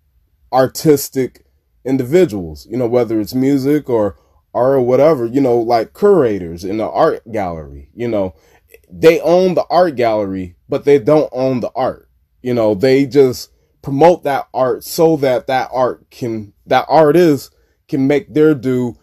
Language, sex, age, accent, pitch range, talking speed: English, male, 20-39, American, 85-145 Hz, 160 wpm